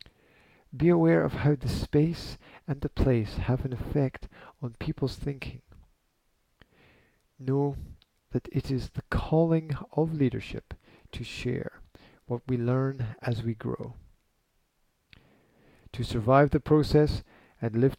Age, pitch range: 50-69, 110-150 Hz